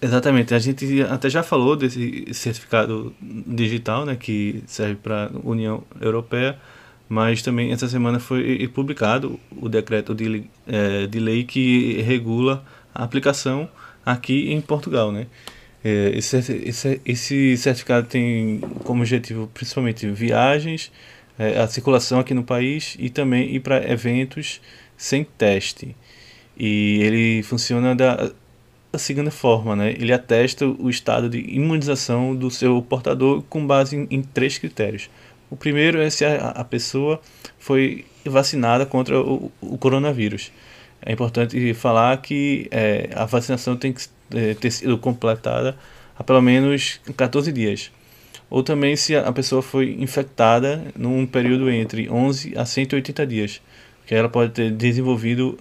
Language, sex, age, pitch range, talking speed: Portuguese, male, 20-39, 115-135 Hz, 140 wpm